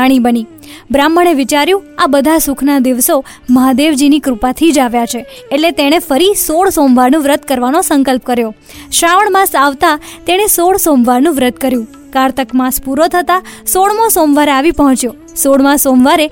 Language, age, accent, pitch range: Gujarati, 20-39, native, 270-340 Hz